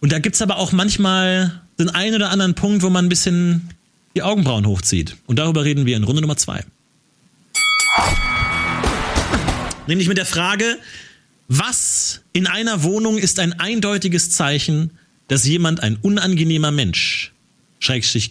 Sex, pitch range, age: male, 135-180 Hz, 40-59